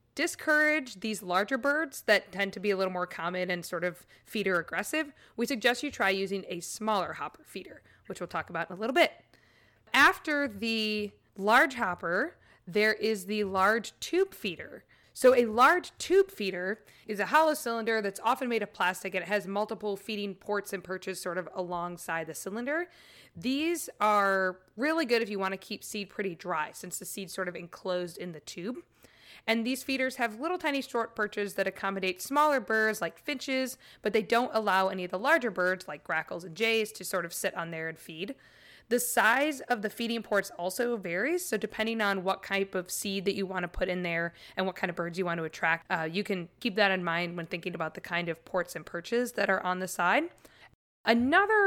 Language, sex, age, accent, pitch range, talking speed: English, female, 20-39, American, 180-235 Hz, 210 wpm